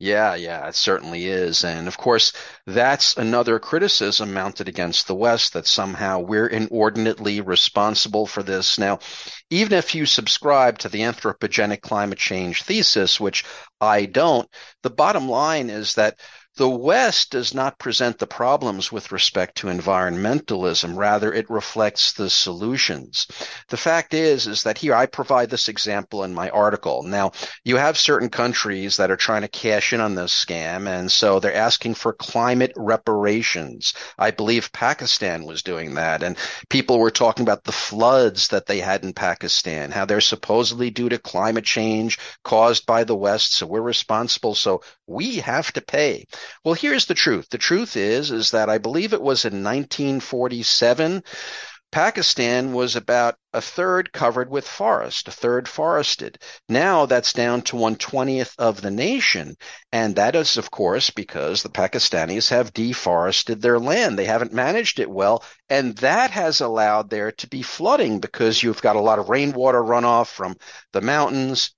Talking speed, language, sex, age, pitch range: 165 wpm, English, male, 50-69, 105-125 Hz